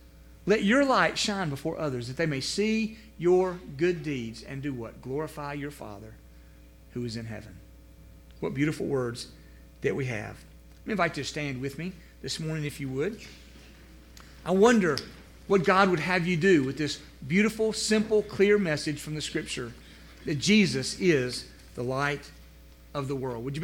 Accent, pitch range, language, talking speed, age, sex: American, 110-175 Hz, English, 175 wpm, 40-59, male